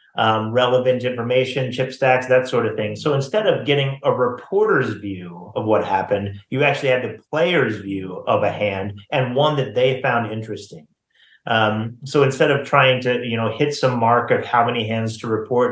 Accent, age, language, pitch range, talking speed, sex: American, 30-49, English, 110-130 Hz, 195 wpm, male